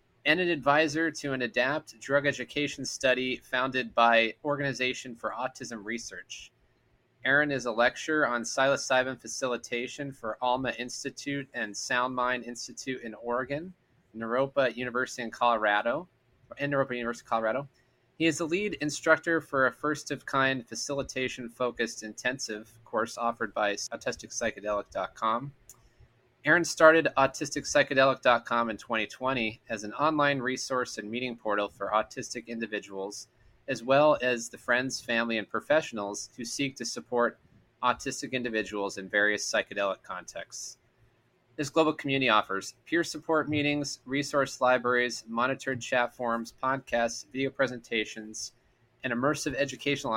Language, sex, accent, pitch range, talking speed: English, male, American, 115-140 Hz, 125 wpm